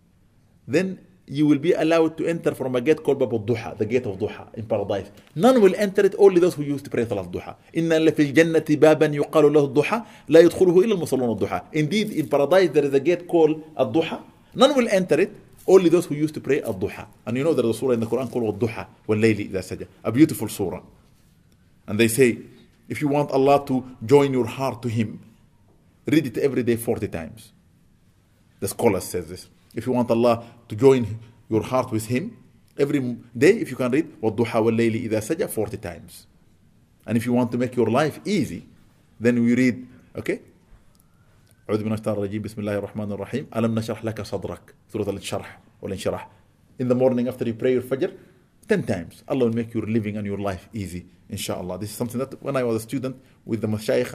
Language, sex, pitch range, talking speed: English, male, 110-150 Hz, 185 wpm